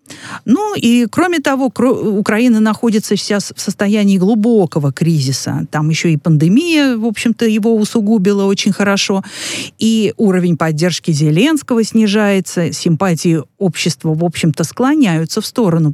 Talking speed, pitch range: 125 wpm, 165-225 Hz